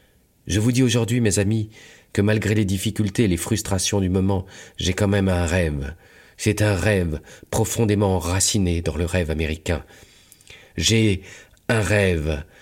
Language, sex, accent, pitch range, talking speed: French, male, French, 90-100 Hz, 150 wpm